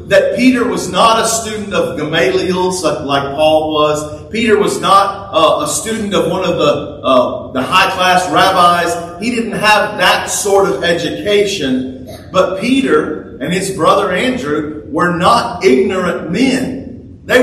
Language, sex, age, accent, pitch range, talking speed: English, male, 40-59, American, 160-220 Hz, 155 wpm